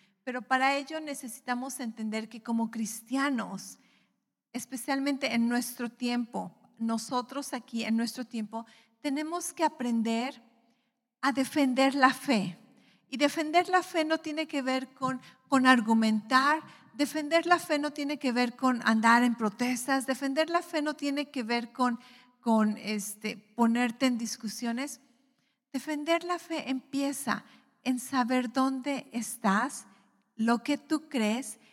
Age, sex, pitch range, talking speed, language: 50-69, female, 225-270 Hz, 135 wpm, English